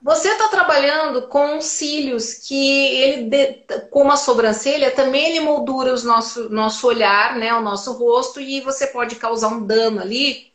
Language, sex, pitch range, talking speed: Portuguese, female, 225-290 Hz, 160 wpm